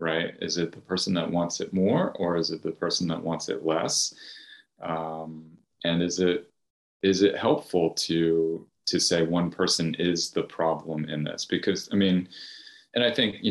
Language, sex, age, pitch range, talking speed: English, male, 30-49, 85-105 Hz, 185 wpm